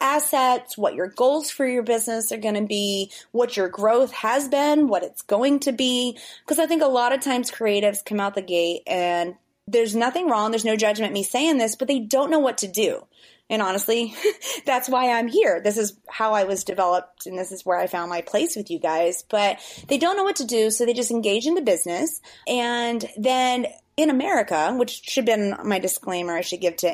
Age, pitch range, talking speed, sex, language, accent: 30-49, 190-250 Hz, 225 wpm, female, English, American